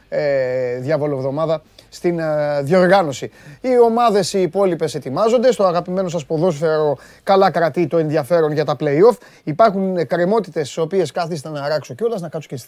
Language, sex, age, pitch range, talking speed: Greek, male, 30-49, 145-195 Hz, 155 wpm